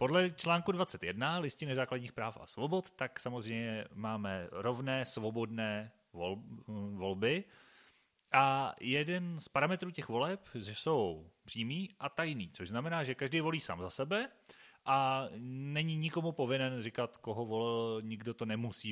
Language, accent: Czech, native